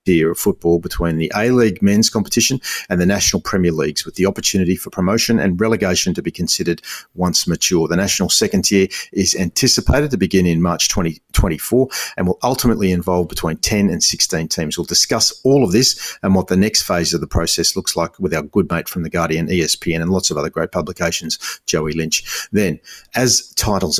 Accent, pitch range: Australian, 85-100 Hz